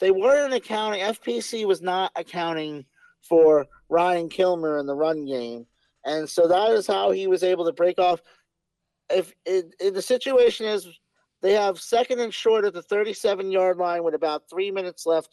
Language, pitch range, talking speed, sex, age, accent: English, 165-210 Hz, 175 wpm, male, 40-59, American